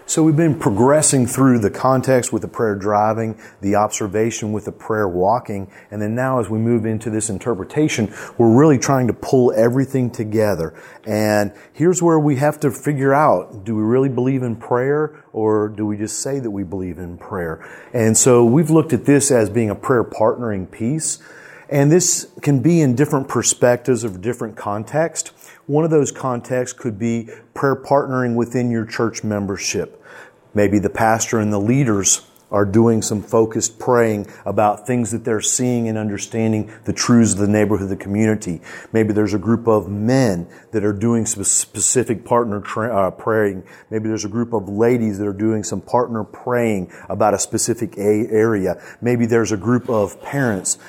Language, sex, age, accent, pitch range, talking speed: English, male, 40-59, American, 105-125 Hz, 185 wpm